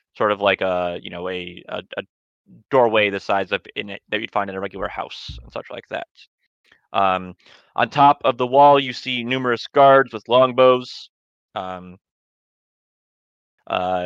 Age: 30-49